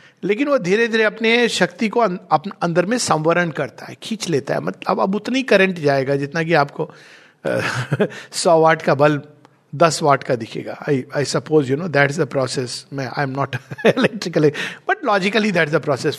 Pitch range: 155-220 Hz